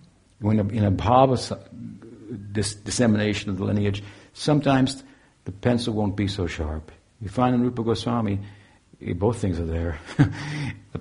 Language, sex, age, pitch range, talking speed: English, male, 70-89, 90-110 Hz, 145 wpm